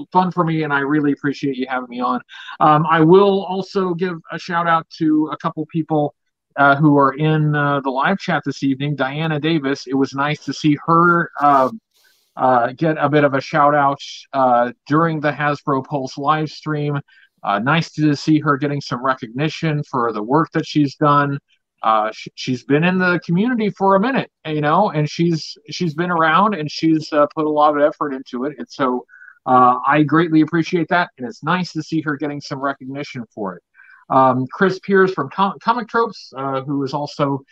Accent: American